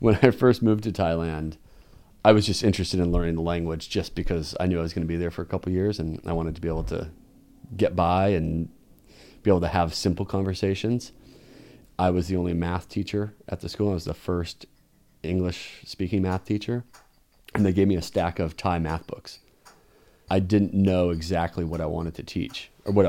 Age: 30-49